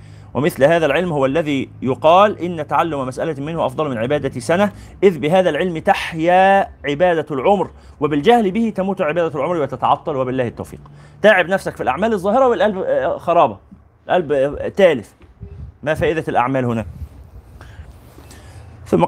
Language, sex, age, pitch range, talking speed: Arabic, male, 30-49, 135-220 Hz, 130 wpm